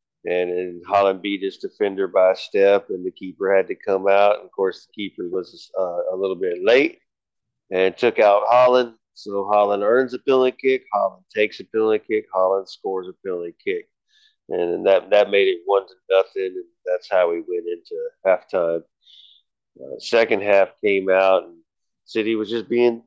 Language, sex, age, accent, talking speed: English, male, 40-59, American, 185 wpm